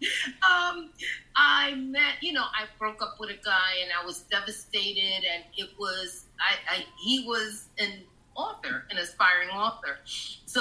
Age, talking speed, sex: 30-49, 160 wpm, female